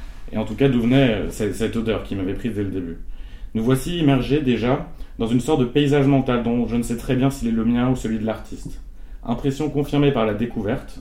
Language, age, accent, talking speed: French, 30-49, French, 235 wpm